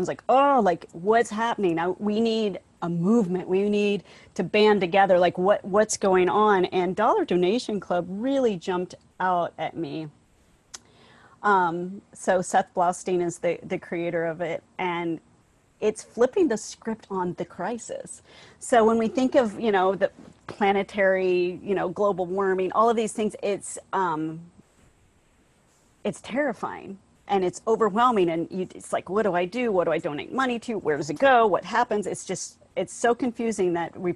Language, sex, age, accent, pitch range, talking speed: English, female, 40-59, American, 180-215 Hz, 170 wpm